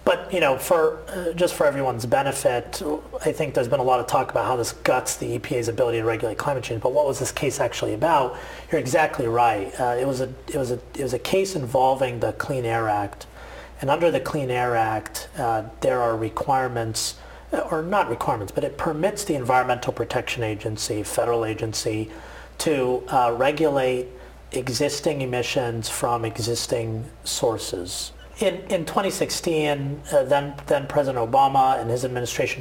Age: 40-59